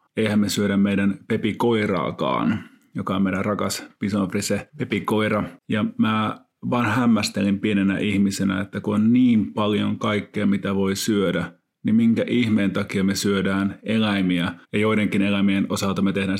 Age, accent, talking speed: 30-49, native, 145 wpm